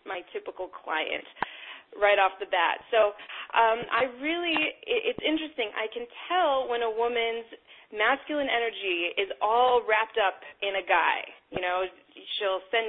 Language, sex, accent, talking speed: English, female, American, 150 wpm